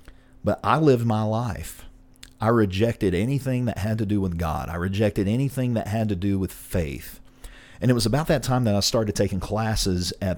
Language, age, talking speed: English, 40-59, 200 wpm